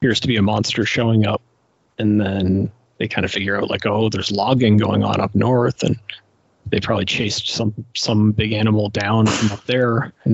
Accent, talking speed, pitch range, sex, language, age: American, 205 wpm, 105-125 Hz, male, English, 30-49